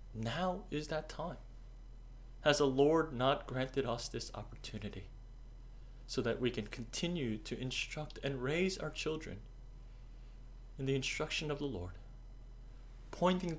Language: English